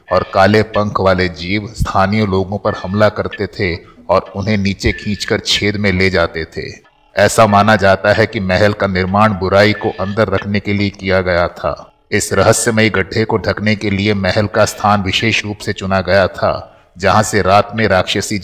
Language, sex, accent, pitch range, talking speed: Hindi, male, native, 95-110 Hz, 190 wpm